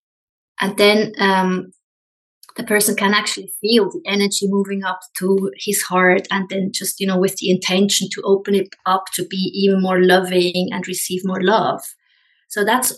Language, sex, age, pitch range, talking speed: English, female, 20-39, 185-215 Hz, 175 wpm